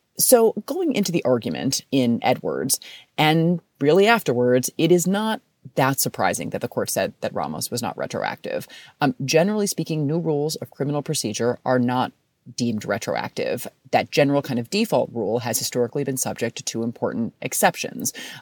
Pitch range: 125-160 Hz